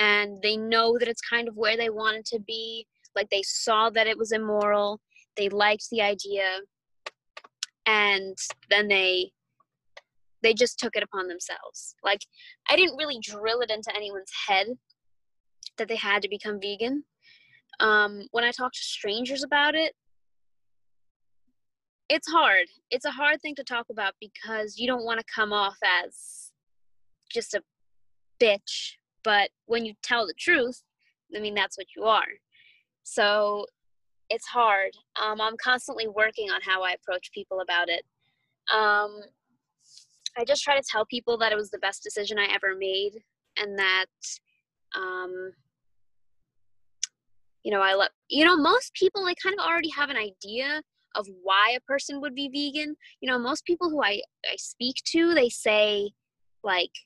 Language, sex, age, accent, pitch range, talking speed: English, female, 20-39, American, 195-245 Hz, 165 wpm